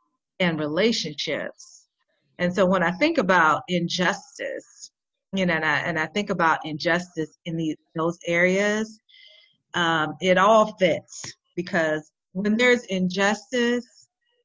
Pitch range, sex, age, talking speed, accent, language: 165-210 Hz, female, 40-59, 125 wpm, American, English